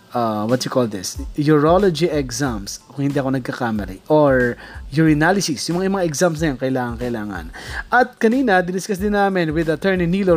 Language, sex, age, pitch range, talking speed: Filipino, male, 20-39, 140-185 Hz, 175 wpm